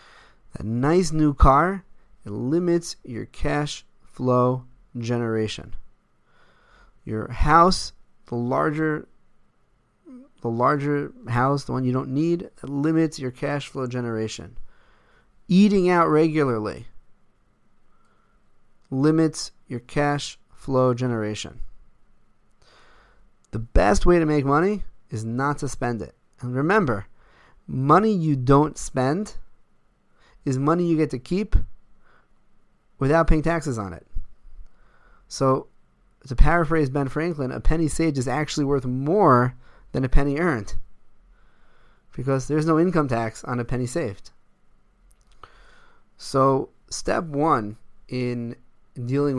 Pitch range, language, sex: 120-155 Hz, English, male